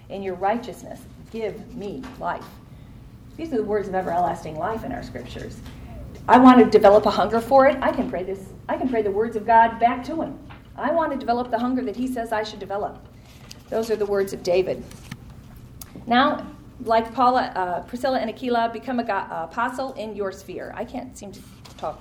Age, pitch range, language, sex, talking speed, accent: 40-59, 195-250 Hz, English, female, 200 wpm, American